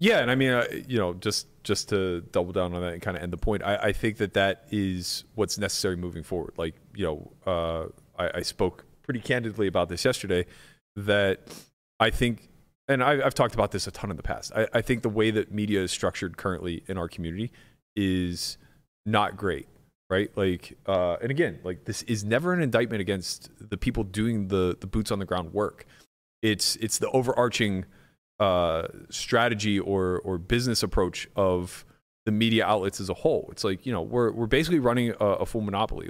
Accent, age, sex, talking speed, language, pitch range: American, 30-49, male, 205 wpm, English, 95-120 Hz